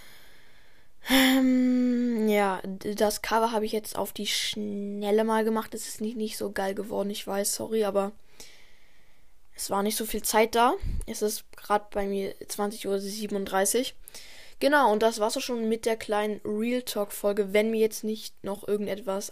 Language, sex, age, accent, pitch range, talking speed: German, female, 10-29, German, 200-225 Hz, 170 wpm